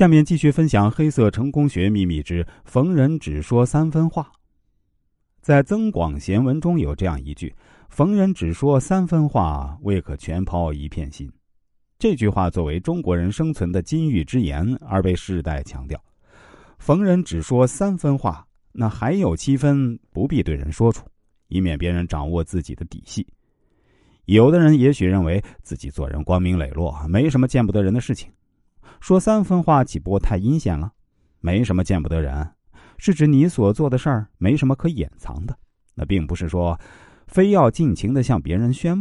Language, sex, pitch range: Japanese, male, 85-140 Hz